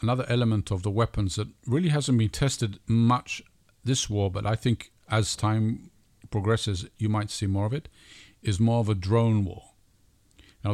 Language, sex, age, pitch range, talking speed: English, male, 50-69, 105-130 Hz, 180 wpm